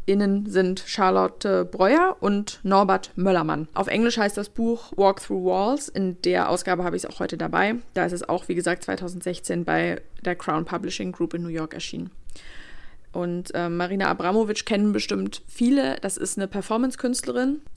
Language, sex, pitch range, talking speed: German, female, 180-235 Hz, 170 wpm